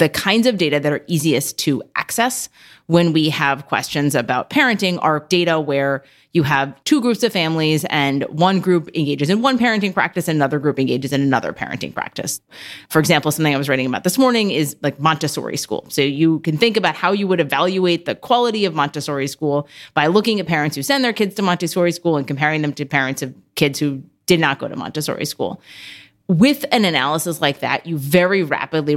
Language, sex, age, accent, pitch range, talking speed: English, female, 30-49, American, 145-180 Hz, 205 wpm